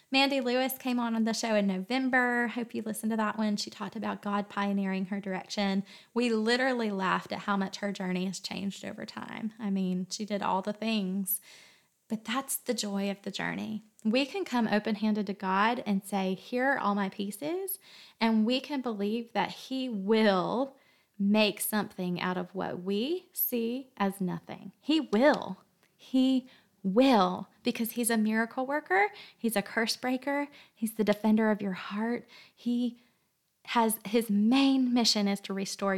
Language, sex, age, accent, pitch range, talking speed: English, female, 20-39, American, 200-245 Hz, 175 wpm